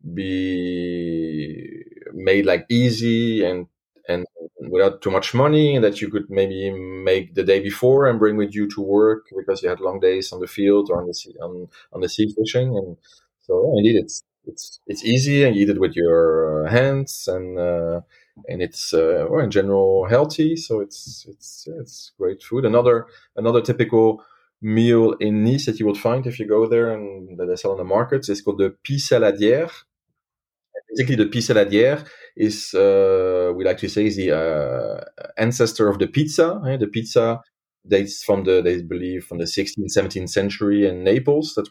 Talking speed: 190 wpm